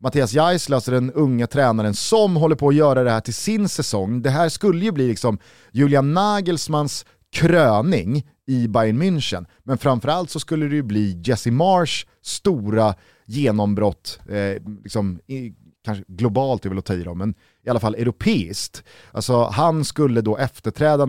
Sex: male